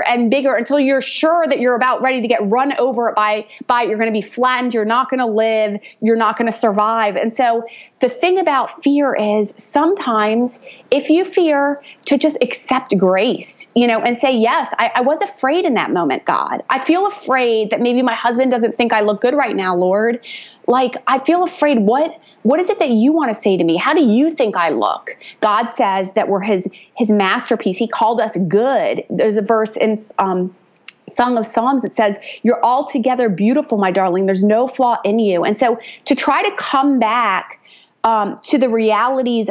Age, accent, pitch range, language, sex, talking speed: 30-49, American, 220-270 Hz, English, female, 210 wpm